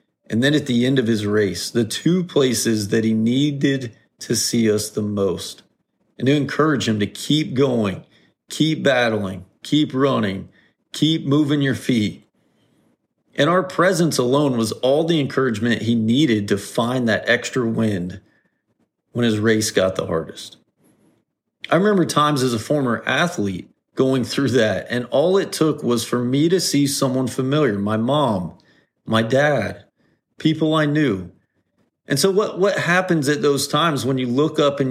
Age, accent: 40-59, American